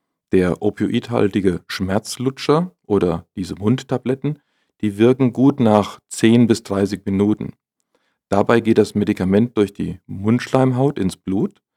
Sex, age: male, 40-59